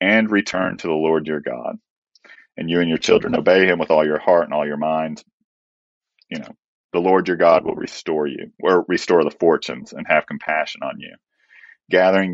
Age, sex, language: 40-59, male, English